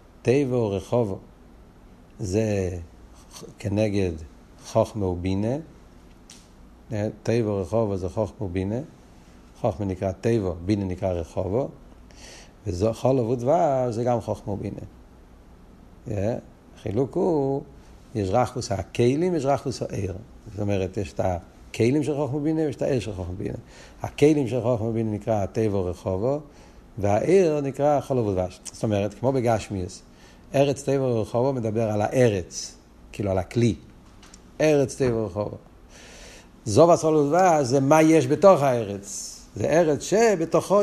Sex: male